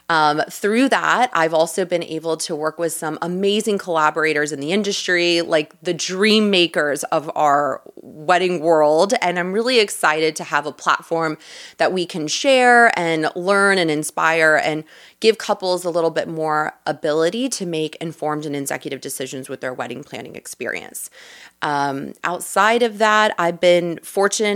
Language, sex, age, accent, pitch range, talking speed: English, female, 30-49, American, 155-200 Hz, 160 wpm